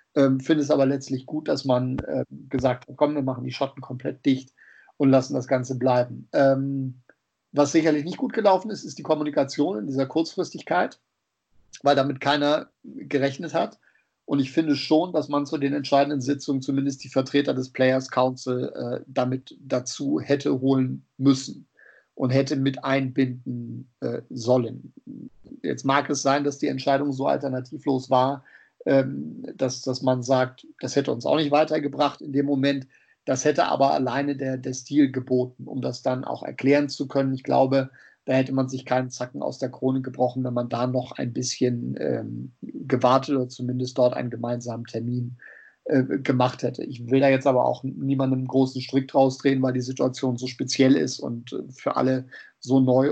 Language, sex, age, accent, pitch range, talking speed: German, male, 50-69, German, 130-140 Hz, 180 wpm